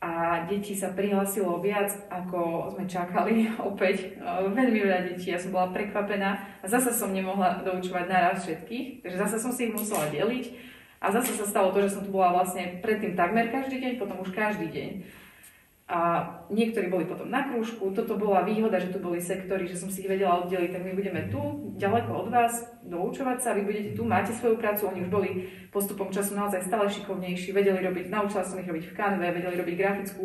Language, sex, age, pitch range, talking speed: Slovak, female, 30-49, 185-220 Hz, 200 wpm